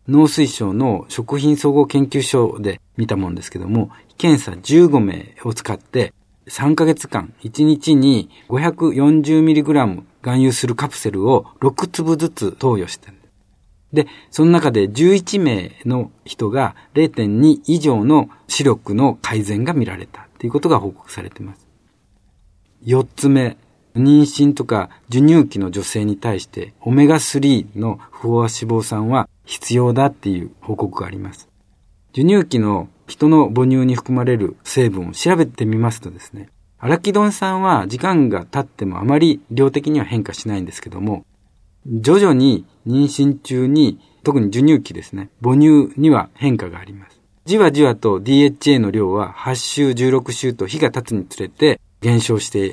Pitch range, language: 105-145 Hz, Japanese